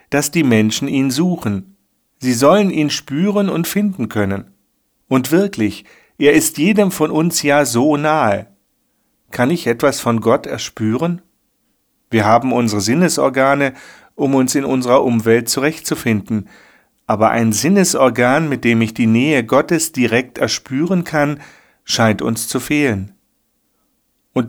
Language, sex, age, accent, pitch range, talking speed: German, male, 40-59, German, 110-150 Hz, 135 wpm